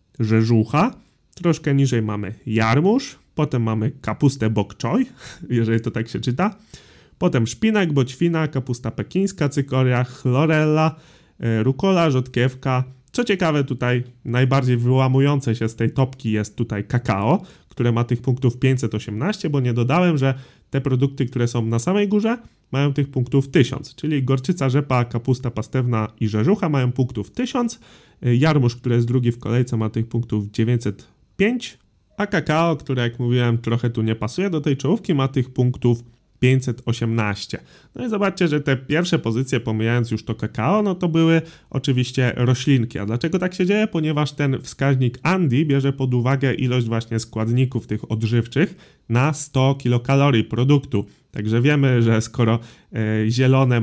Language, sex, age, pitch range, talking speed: Polish, male, 30-49, 115-145 Hz, 150 wpm